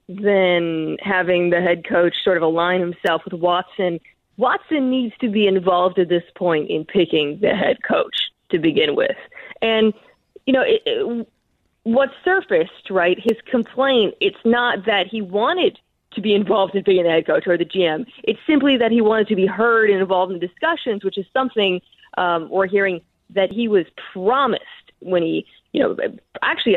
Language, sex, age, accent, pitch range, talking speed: English, female, 20-39, American, 180-245 Hz, 175 wpm